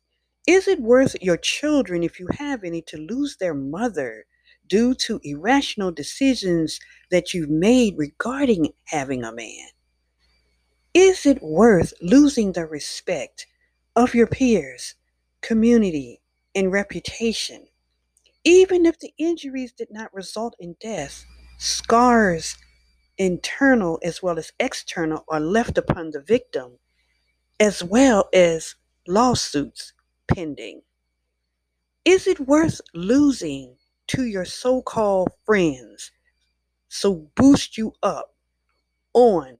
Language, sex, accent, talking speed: English, female, American, 110 wpm